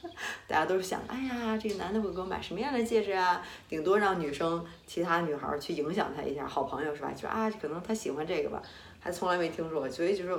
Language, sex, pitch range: Chinese, female, 150-220 Hz